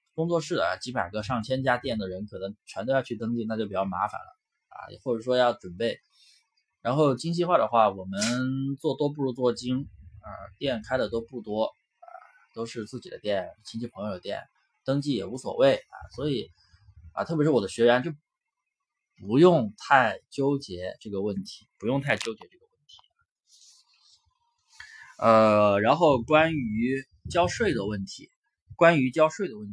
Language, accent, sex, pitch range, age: Chinese, native, male, 110-170 Hz, 20-39